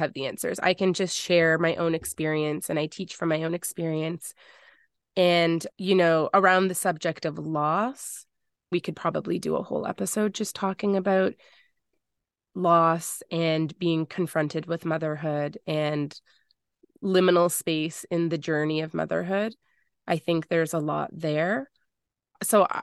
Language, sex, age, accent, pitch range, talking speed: English, female, 20-39, American, 160-185 Hz, 145 wpm